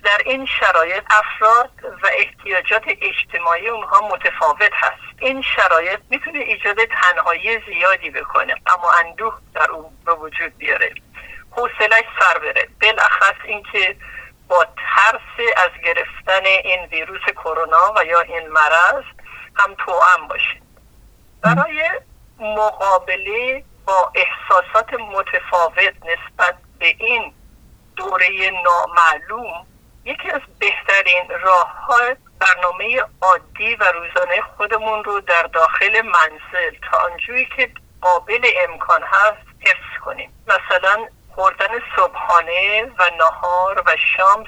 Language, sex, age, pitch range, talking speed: Persian, male, 50-69, 180-255 Hz, 110 wpm